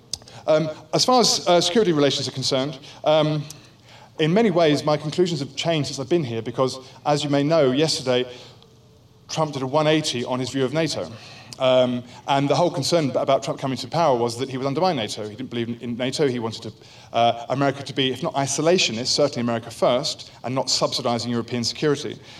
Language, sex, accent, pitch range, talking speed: English, male, British, 125-155 Hz, 200 wpm